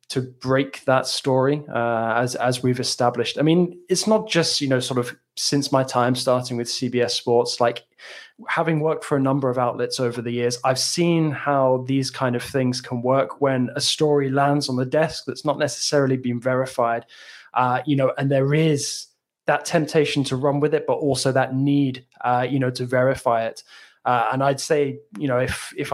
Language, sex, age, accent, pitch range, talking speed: English, male, 20-39, British, 125-145 Hz, 200 wpm